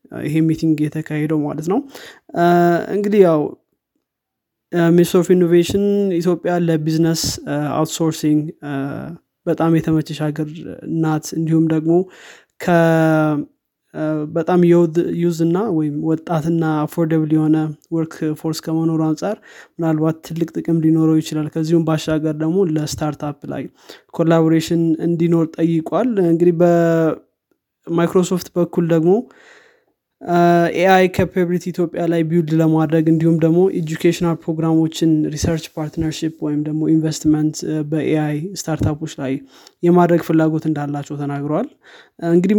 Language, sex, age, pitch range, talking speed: Amharic, male, 20-39, 155-175 Hz, 100 wpm